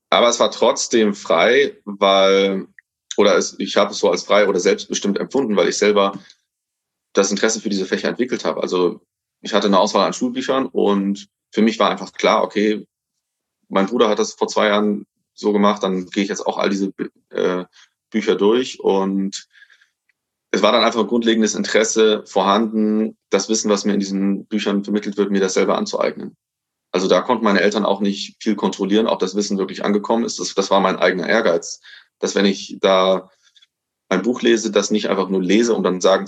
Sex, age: male, 30-49